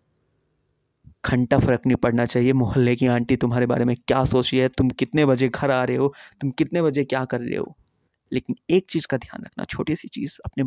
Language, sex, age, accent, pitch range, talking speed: Hindi, male, 20-39, native, 125-150 Hz, 220 wpm